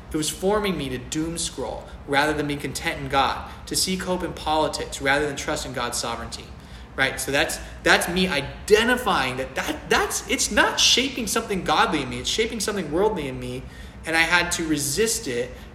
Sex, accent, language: male, American, English